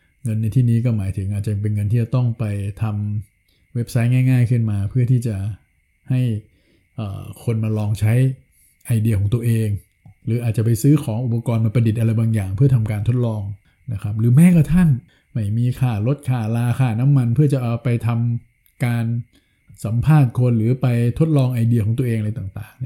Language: Thai